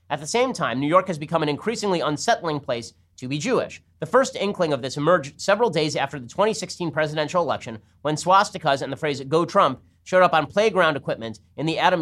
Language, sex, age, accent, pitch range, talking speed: English, male, 30-49, American, 130-180 Hz, 215 wpm